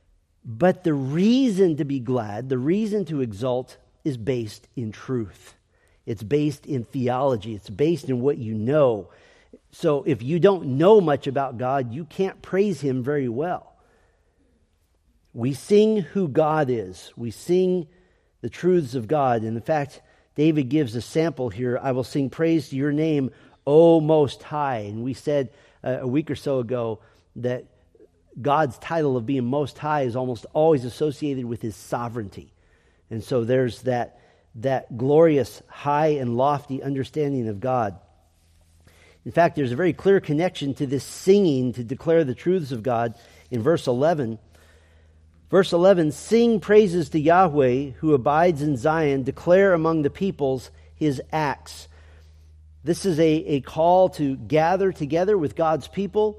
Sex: male